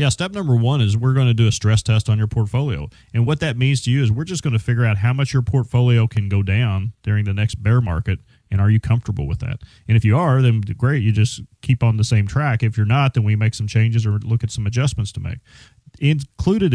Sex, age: male, 30-49